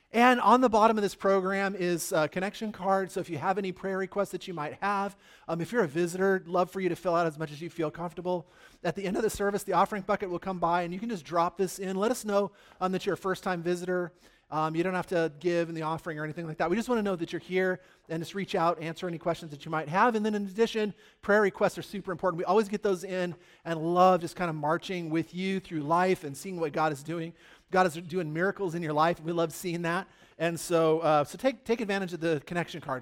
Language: English